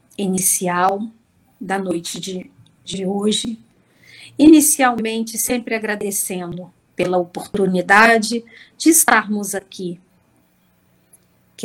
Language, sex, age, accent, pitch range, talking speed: Portuguese, female, 50-69, Brazilian, 185-225 Hz, 75 wpm